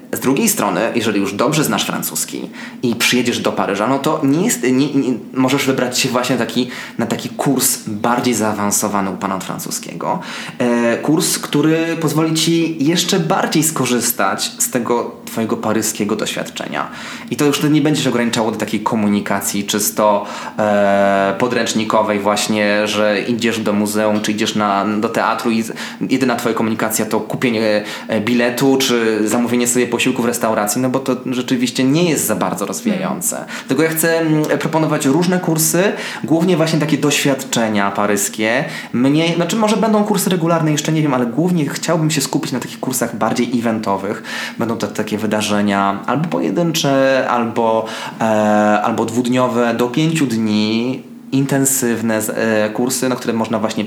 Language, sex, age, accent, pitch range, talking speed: Polish, male, 20-39, native, 110-150 Hz, 160 wpm